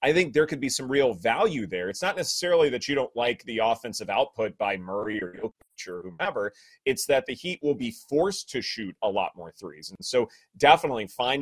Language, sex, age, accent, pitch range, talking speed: English, male, 30-49, American, 115-190 Hz, 215 wpm